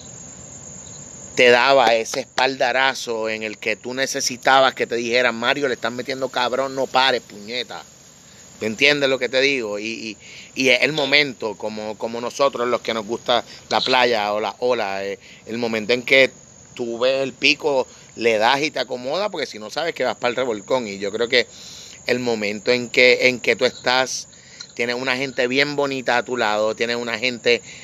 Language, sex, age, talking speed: Spanish, male, 30-49, 190 wpm